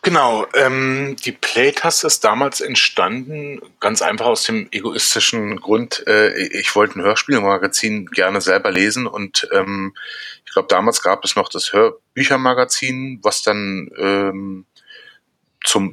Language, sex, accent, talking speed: German, male, German, 130 wpm